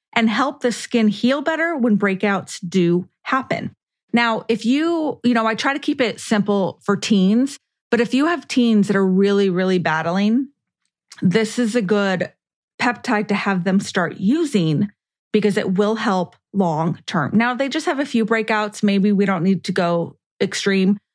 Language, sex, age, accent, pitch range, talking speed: English, female, 30-49, American, 190-235 Hz, 180 wpm